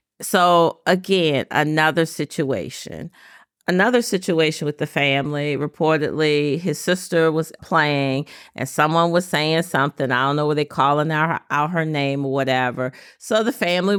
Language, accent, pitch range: English, American, 140-170 Hz